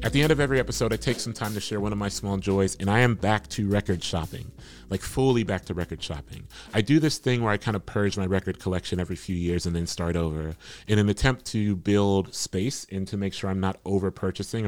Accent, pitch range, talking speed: American, 90-105 Hz, 260 wpm